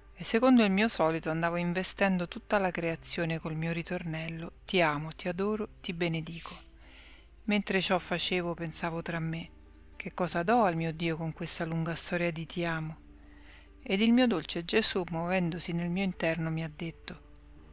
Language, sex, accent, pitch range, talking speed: Italian, female, native, 165-195 Hz, 170 wpm